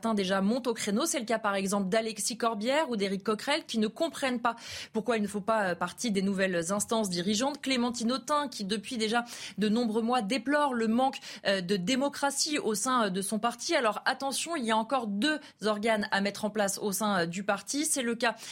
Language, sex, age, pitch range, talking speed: French, female, 20-39, 210-255 Hz, 205 wpm